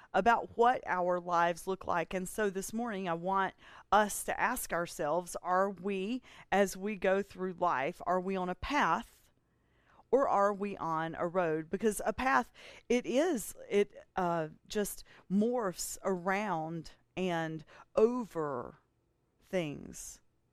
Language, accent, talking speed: English, American, 135 wpm